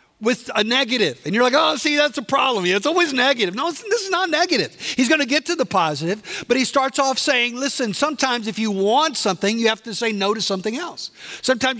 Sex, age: male, 50-69